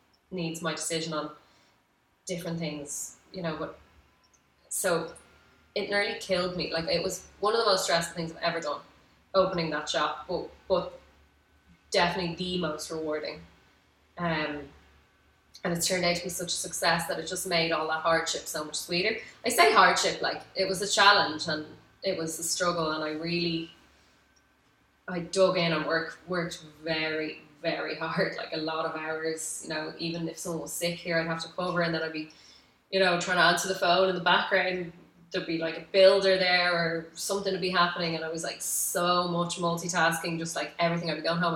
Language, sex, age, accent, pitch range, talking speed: English, female, 20-39, Irish, 155-180 Hz, 195 wpm